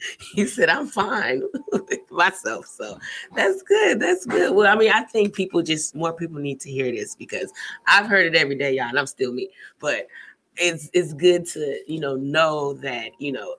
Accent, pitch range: American, 135-170 Hz